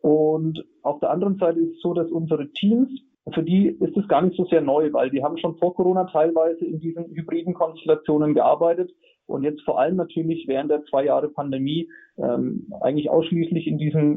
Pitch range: 140-170 Hz